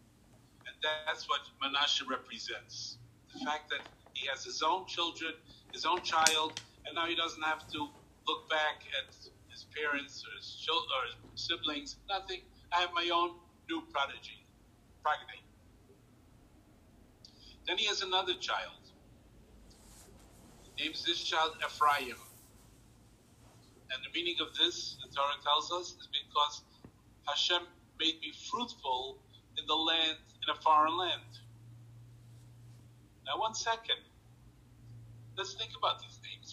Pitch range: 120-175 Hz